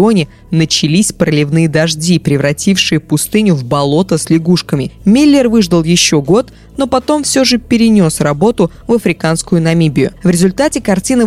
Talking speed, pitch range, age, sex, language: 135 wpm, 165-225 Hz, 20-39, female, Russian